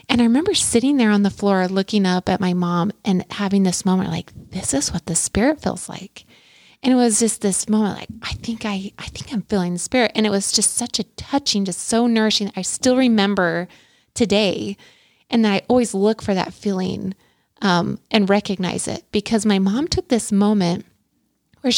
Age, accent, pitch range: 20-39, American, 190-230 Hz